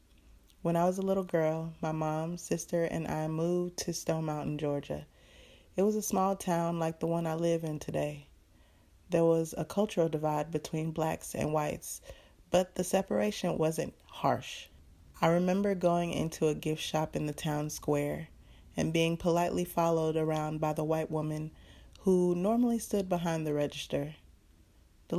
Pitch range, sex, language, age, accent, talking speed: 145-175 Hz, female, English, 30-49, American, 165 wpm